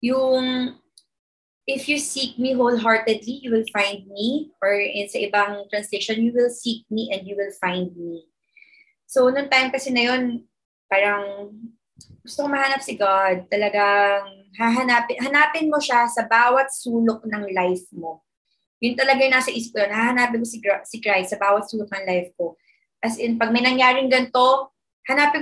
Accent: native